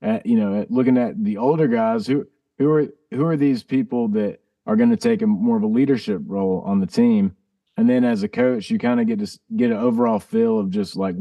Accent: American